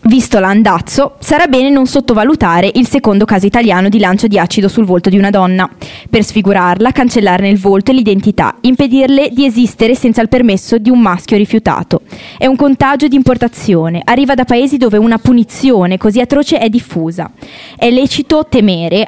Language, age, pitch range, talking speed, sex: Italian, 20-39, 190-250 Hz, 170 wpm, female